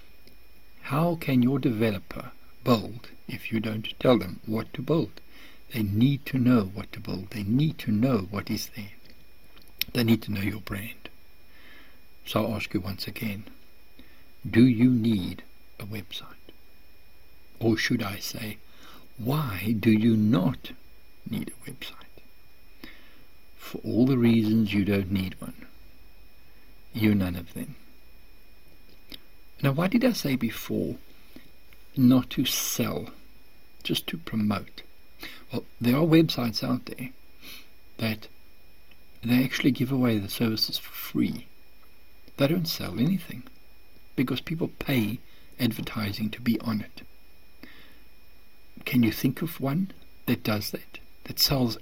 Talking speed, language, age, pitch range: 135 wpm, English, 60-79, 95-125 Hz